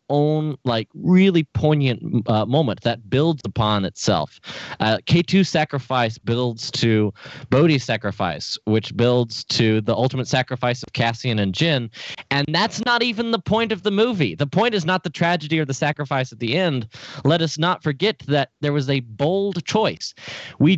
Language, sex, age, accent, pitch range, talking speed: English, male, 20-39, American, 120-170 Hz, 170 wpm